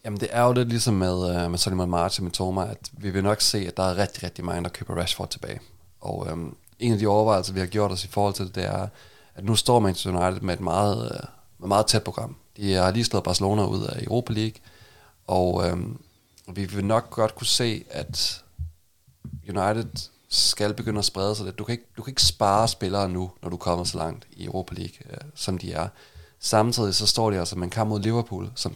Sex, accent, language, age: male, native, Danish, 30-49